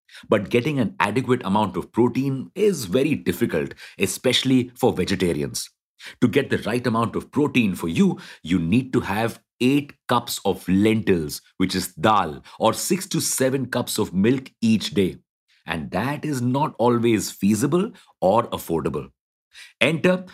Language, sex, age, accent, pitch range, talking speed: English, male, 50-69, Indian, 95-135 Hz, 150 wpm